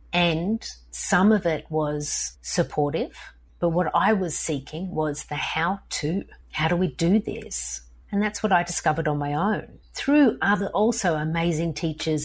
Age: 50-69